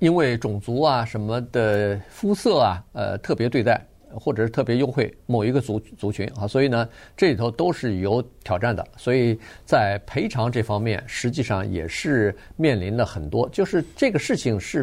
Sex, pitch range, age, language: male, 105-140 Hz, 50-69, Chinese